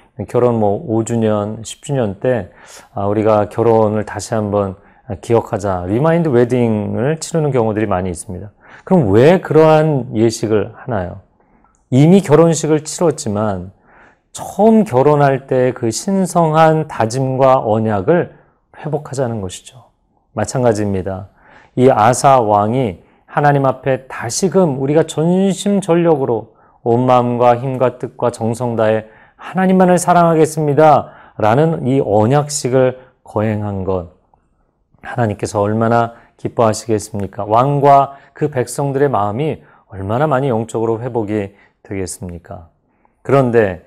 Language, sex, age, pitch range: Korean, male, 40-59, 105-145 Hz